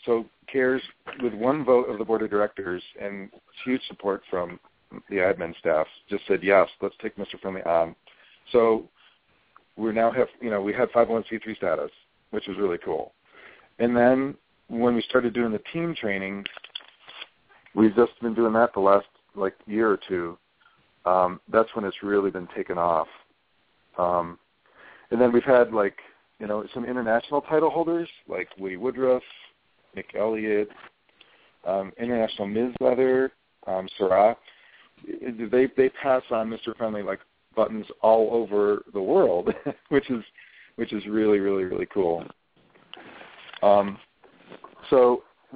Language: English